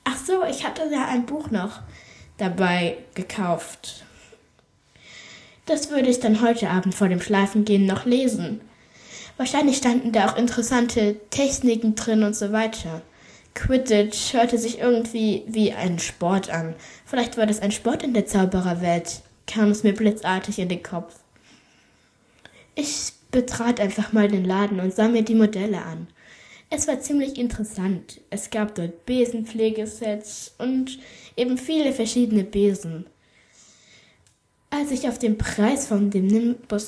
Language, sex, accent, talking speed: German, female, German, 145 wpm